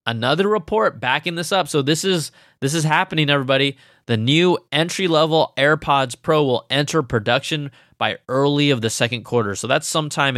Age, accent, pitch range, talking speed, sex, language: 20-39, American, 120-155 Hz, 160 wpm, male, English